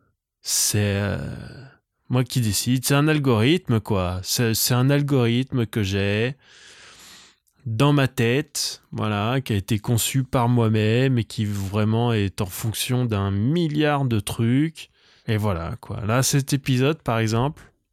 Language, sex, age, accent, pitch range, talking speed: French, male, 20-39, French, 110-135 Hz, 145 wpm